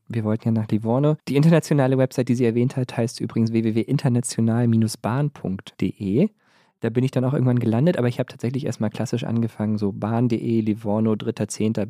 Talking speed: 165 wpm